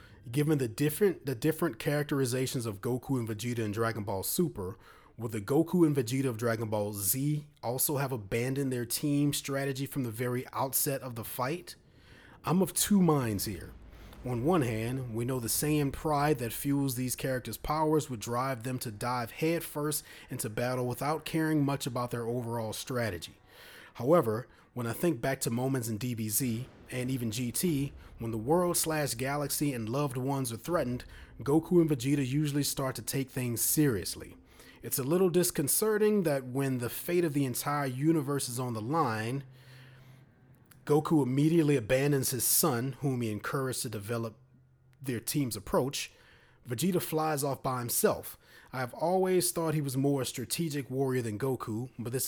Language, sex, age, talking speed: English, male, 30-49, 170 wpm